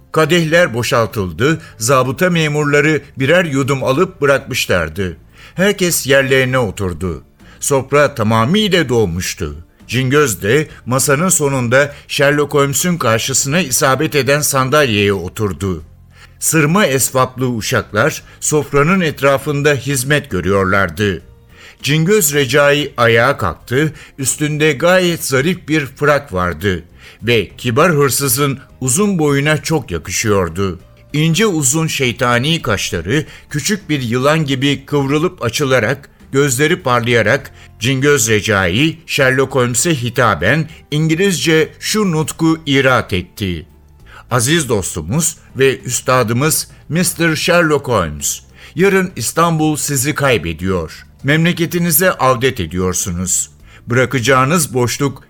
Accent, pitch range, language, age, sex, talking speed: native, 115-155 Hz, Turkish, 60-79, male, 95 wpm